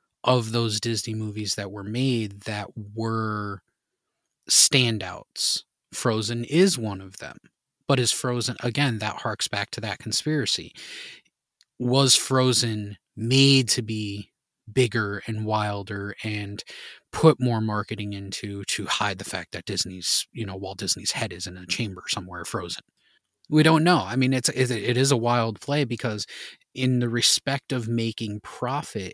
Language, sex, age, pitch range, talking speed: English, male, 30-49, 105-130 Hz, 150 wpm